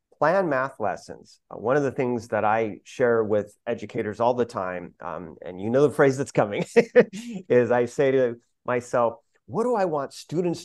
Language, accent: English, American